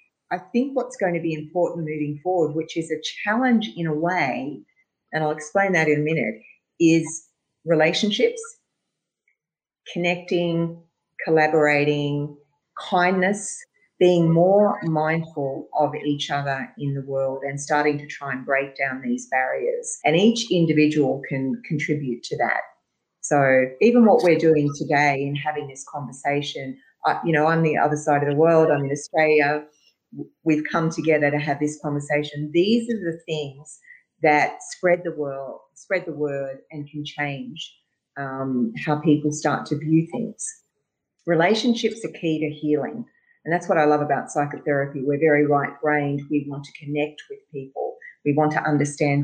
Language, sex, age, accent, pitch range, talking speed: English, female, 40-59, Australian, 145-175 Hz, 155 wpm